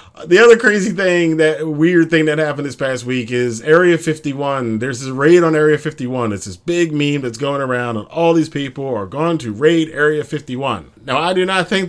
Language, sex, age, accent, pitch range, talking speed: English, male, 30-49, American, 115-150 Hz, 215 wpm